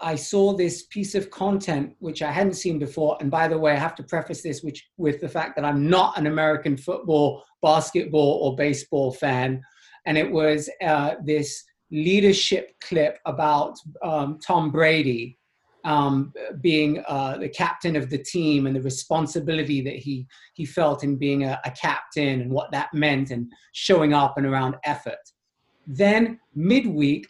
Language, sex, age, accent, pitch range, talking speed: English, male, 30-49, British, 140-175 Hz, 170 wpm